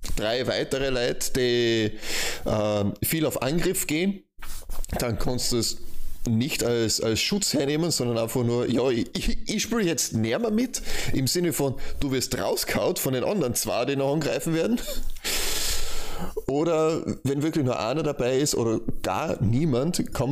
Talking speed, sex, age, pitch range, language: 160 wpm, male, 30-49, 105-145 Hz, German